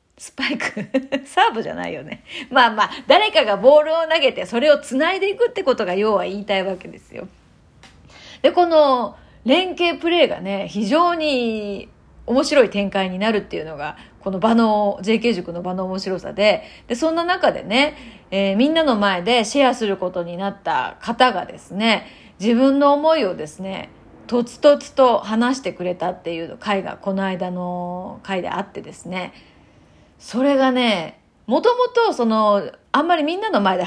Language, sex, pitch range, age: Japanese, female, 195-280 Hz, 30-49